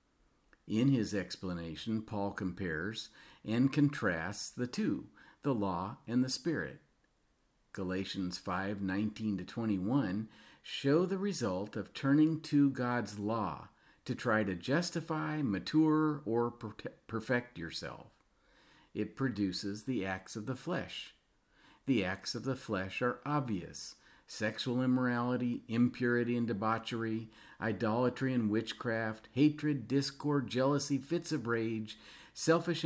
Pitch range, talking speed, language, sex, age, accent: 105-140 Hz, 115 wpm, English, male, 50-69, American